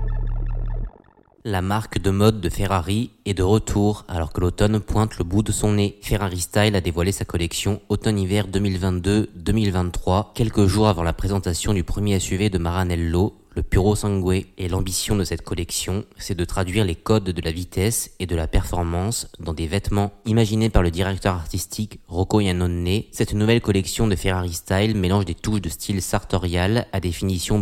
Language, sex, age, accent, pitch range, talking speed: French, male, 20-39, French, 90-105 Hz, 175 wpm